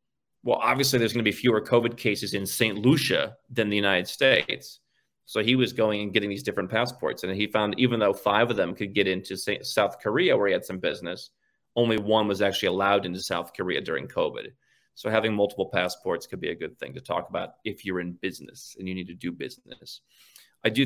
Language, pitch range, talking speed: English, 95-115 Hz, 220 wpm